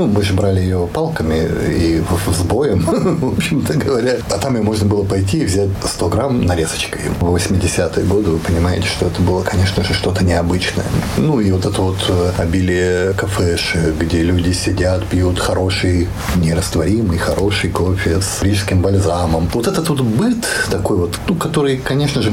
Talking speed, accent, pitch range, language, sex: 165 wpm, native, 90-110 Hz, Russian, male